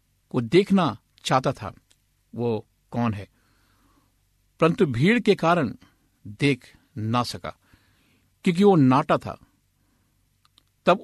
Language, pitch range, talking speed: Hindi, 105-160 Hz, 105 wpm